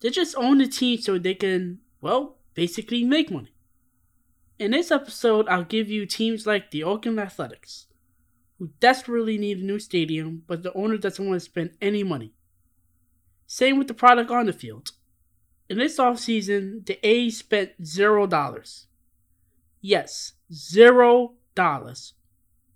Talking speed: 150 wpm